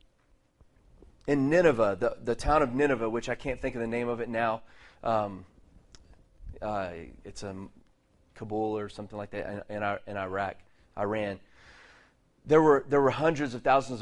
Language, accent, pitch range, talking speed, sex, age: English, American, 105-125 Hz, 165 wpm, male, 30-49